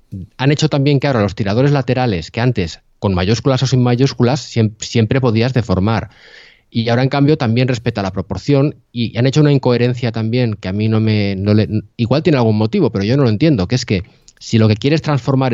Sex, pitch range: male, 105-135 Hz